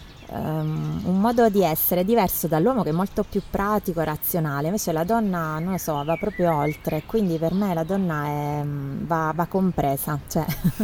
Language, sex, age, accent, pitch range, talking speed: Italian, female, 20-39, native, 155-190 Hz, 185 wpm